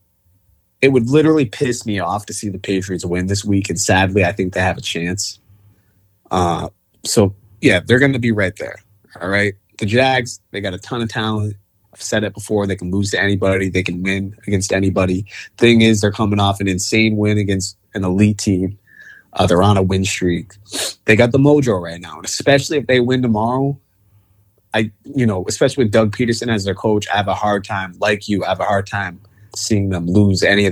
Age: 20-39